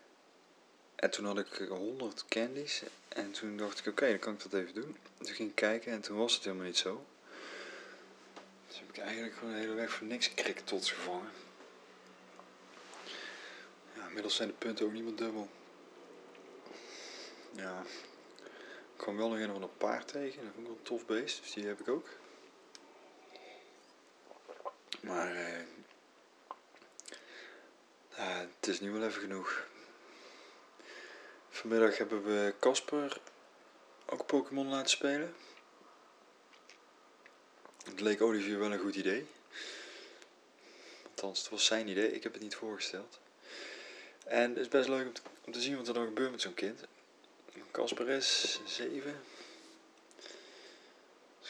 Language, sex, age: Dutch, male, 20-39